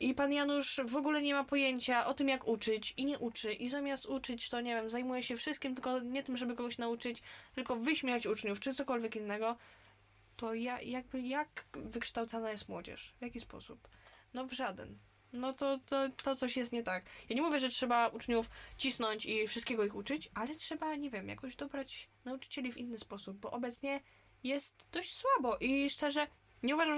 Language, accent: Polish, native